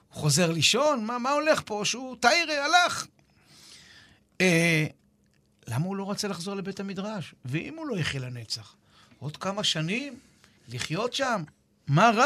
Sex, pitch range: male, 135-205 Hz